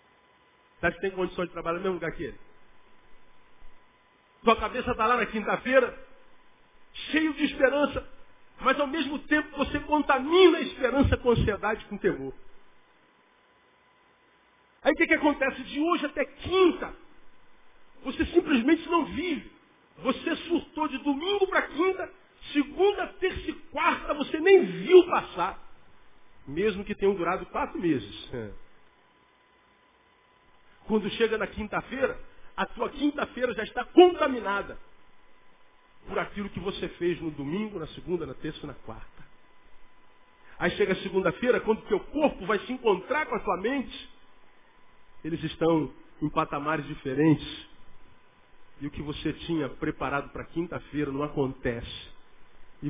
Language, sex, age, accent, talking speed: Portuguese, male, 50-69, Brazilian, 135 wpm